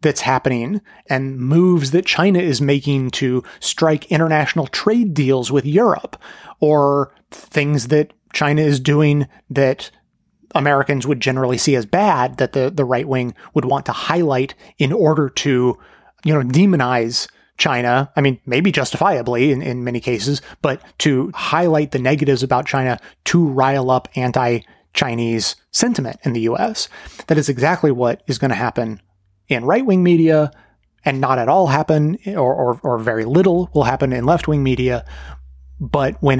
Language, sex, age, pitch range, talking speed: English, male, 30-49, 125-155 Hz, 155 wpm